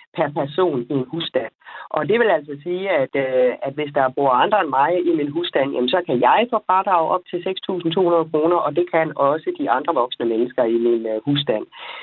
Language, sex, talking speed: Danish, female, 210 wpm